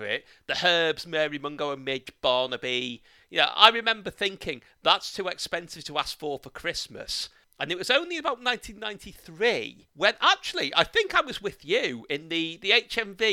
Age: 40-59